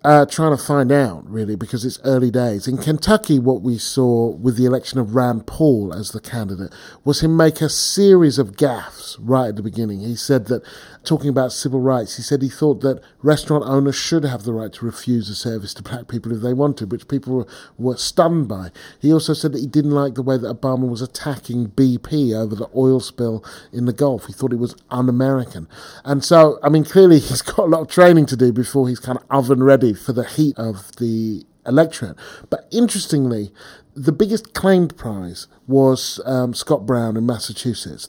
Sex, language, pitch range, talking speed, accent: male, English, 115-145 Hz, 210 wpm, British